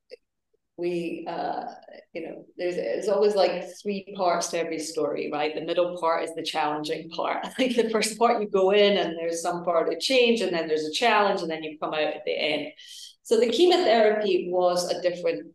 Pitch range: 160-195 Hz